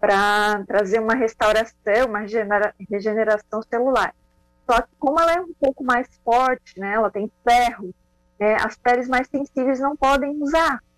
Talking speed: 160 wpm